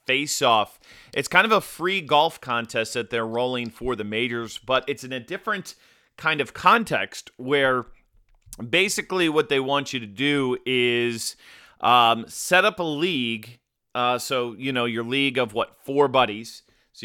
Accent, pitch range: American, 120-150 Hz